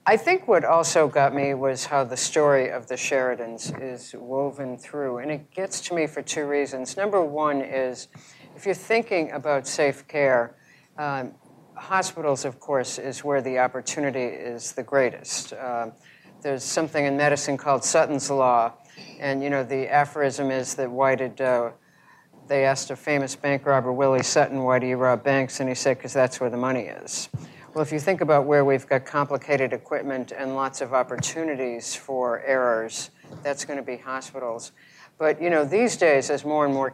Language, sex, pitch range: English, female, 130-145 Hz